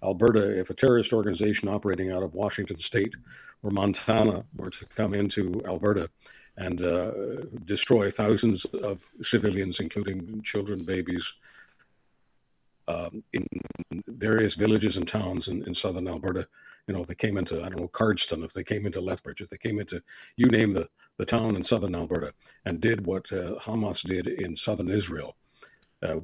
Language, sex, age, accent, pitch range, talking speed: English, male, 50-69, American, 90-105 Hz, 165 wpm